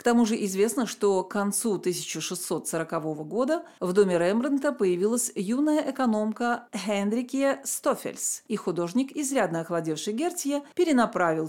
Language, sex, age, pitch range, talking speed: Russian, female, 40-59, 180-255 Hz, 120 wpm